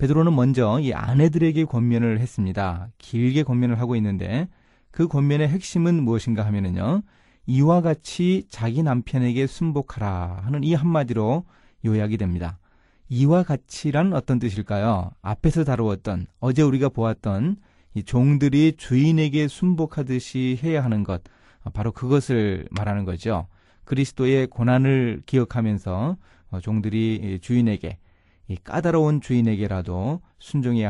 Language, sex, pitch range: Korean, male, 105-150 Hz